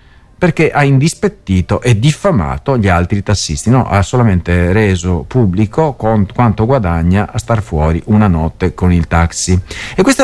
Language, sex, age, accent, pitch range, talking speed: Italian, male, 40-59, native, 100-165 Hz, 145 wpm